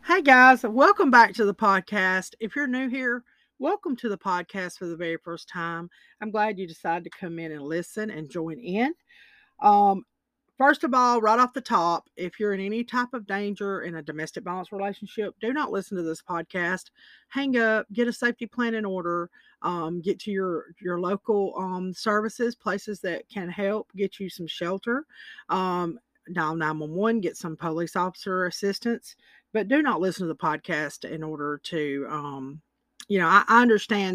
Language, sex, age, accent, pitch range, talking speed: English, female, 40-59, American, 170-225 Hz, 185 wpm